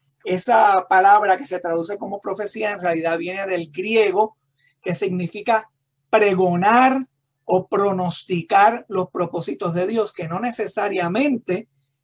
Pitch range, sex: 160-205 Hz, male